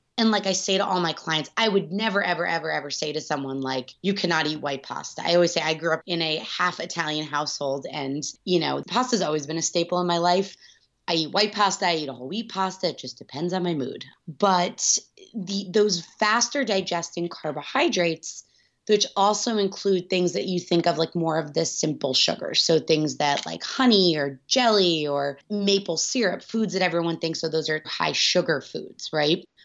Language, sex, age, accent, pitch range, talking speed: English, female, 20-39, American, 155-195 Hz, 210 wpm